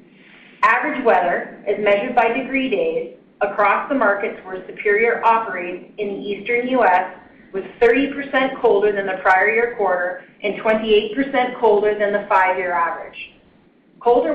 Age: 30-49